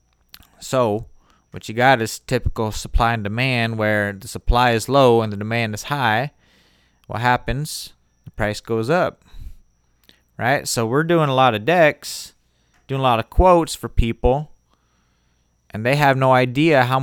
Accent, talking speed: American, 160 wpm